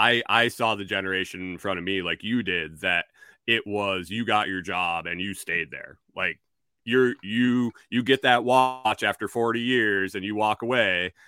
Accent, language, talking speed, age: American, English, 195 wpm, 30-49